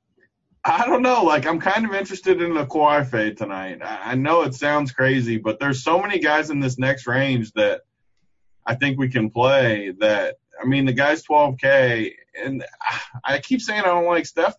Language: English